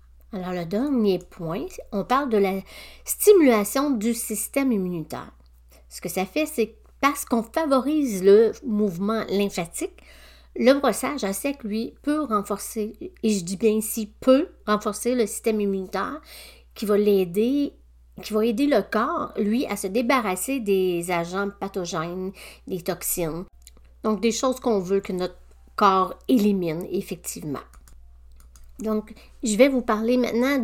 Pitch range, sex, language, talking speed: 190-245 Hz, female, French, 145 wpm